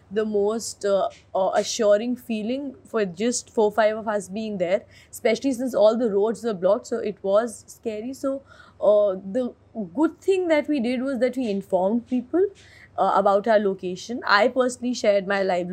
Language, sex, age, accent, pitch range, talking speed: English, female, 20-39, Indian, 185-225 Hz, 185 wpm